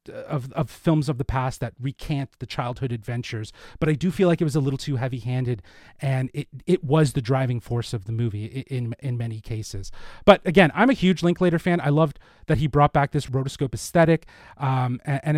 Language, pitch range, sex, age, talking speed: English, 120-160 Hz, male, 30-49, 210 wpm